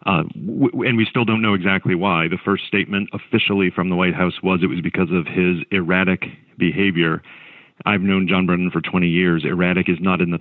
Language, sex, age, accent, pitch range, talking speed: English, male, 50-69, American, 85-100 Hz, 210 wpm